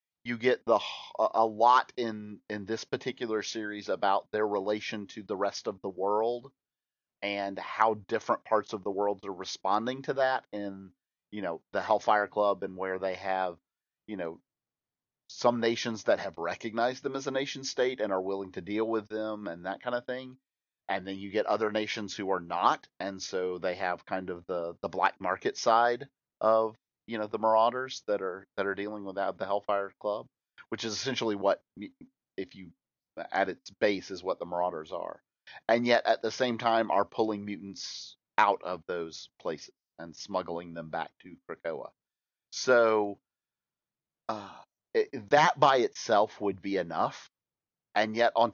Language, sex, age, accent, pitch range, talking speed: English, male, 40-59, American, 95-115 Hz, 175 wpm